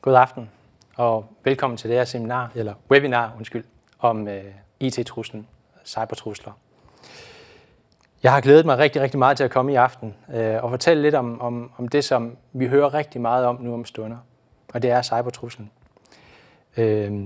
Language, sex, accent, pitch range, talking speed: Danish, male, native, 110-135 Hz, 170 wpm